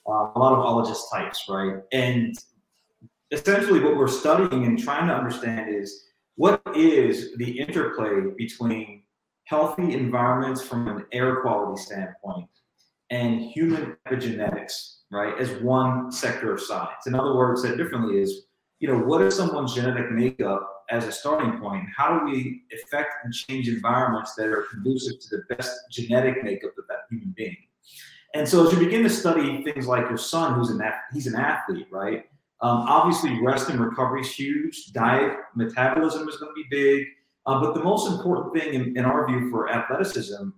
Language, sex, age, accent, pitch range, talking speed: English, male, 30-49, American, 115-155 Hz, 170 wpm